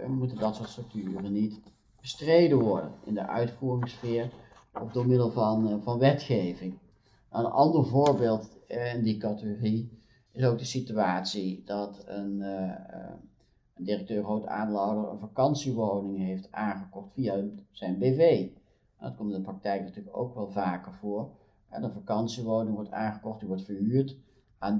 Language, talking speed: Dutch, 145 wpm